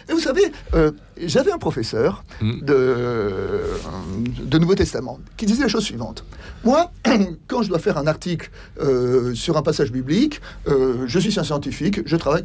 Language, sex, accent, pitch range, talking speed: French, male, French, 130-195 Hz, 170 wpm